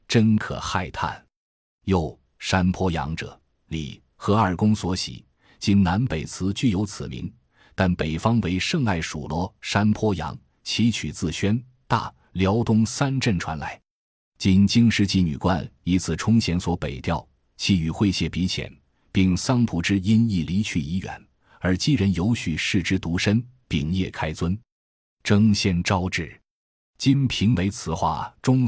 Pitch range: 85-110 Hz